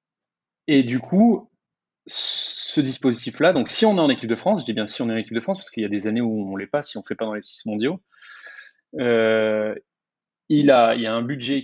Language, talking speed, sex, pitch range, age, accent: French, 265 wpm, male, 105-140 Hz, 20-39, French